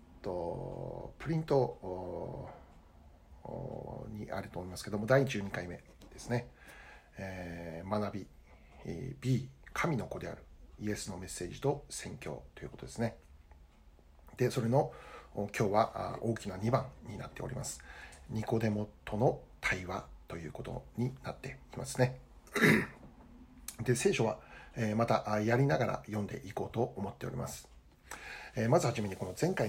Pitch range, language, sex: 80-125 Hz, Japanese, male